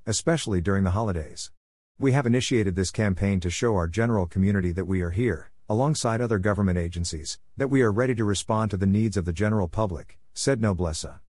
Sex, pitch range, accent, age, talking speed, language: male, 90-115 Hz, American, 50-69, 195 wpm, English